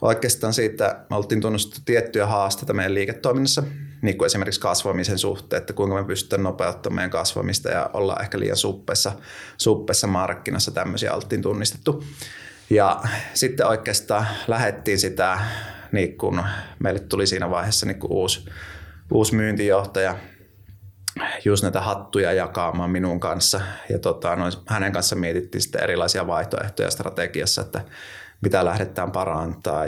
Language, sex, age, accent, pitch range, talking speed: Finnish, male, 30-49, native, 95-110 Hz, 130 wpm